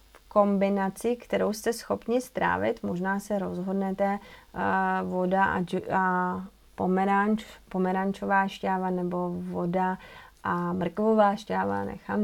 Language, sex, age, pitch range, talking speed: Czech, female, 30-49, 185-200 Hz, 95 wpm